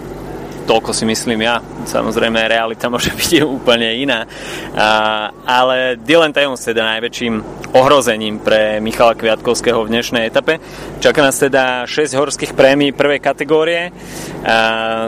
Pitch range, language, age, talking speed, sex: 115-145 Hz, Slovak, 20-39, 125 wpm, male